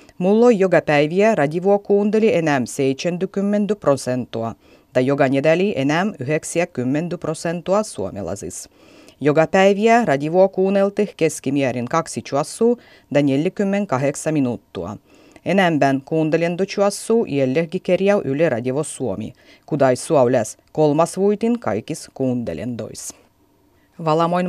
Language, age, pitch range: Finnish, 30-49, 135-180 Hz